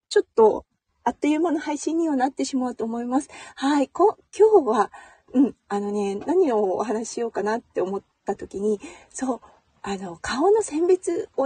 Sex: female